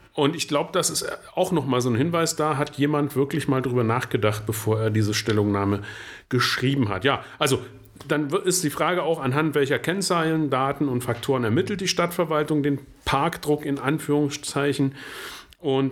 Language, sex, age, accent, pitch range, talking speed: German, male, 40-59, German, 110-145 Hz, 165 wpm